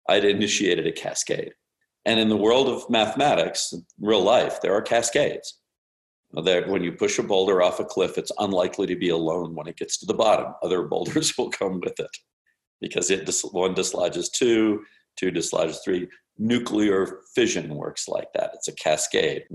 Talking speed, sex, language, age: 175 wpm, male, English, 50-69